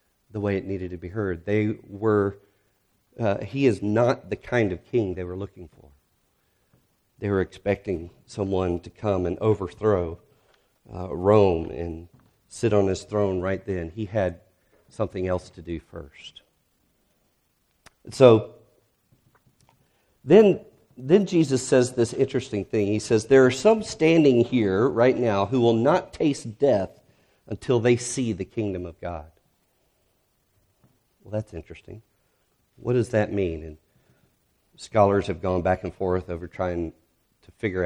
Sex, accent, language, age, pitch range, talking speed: male, American, English, 40-59, 95-115 Hz, 145 wpm